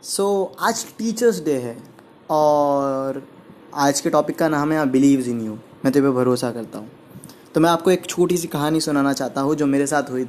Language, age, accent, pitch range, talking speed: Hindi, 20-39, native, 140-200 Hz, 200 wpm